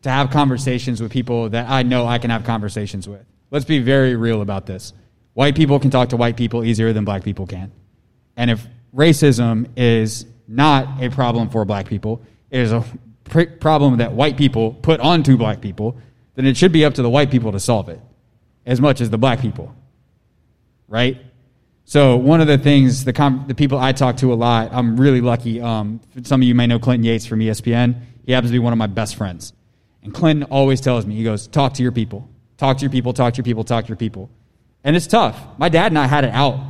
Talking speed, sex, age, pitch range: 225 wpm, male, 20-39, 115-140 Hz